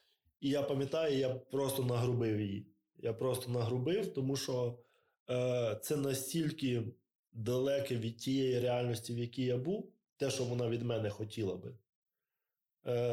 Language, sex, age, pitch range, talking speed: Ukrainian, male, 20-39, 120-140 Hz, 140 wpm